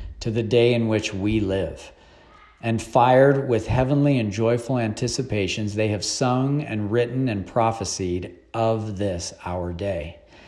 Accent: American